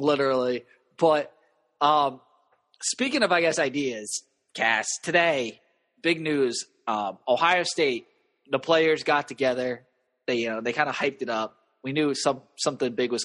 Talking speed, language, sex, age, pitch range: 155 wpm, English, male, 20-39, 125-170 Hz